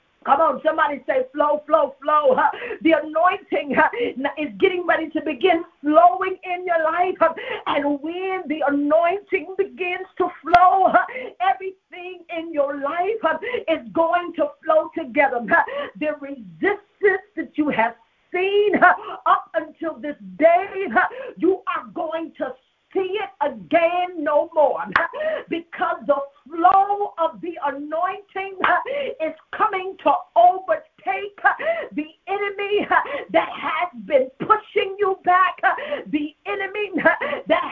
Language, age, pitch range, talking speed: English, 50-69, 300-380 Hz, 115 wpm